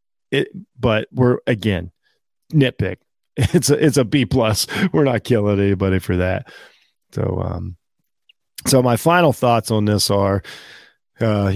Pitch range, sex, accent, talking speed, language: 105-140 Hz, male, American, 140 wpm, English